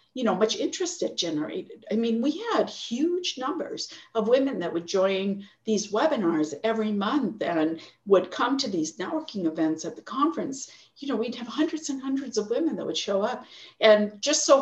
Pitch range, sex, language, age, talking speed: 185-270 Hz, female, English, 50-69, 195 wpm